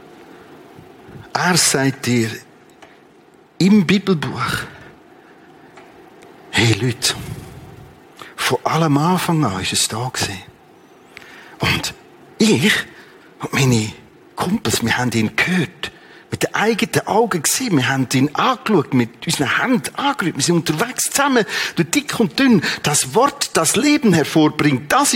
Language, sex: German, male